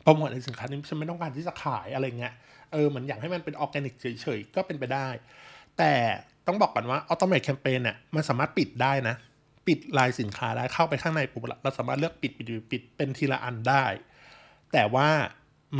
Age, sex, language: 20-39, male, Thai